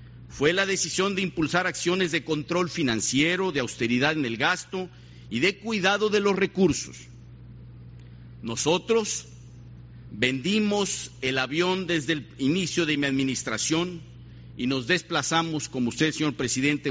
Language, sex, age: Spanish, male, 50-69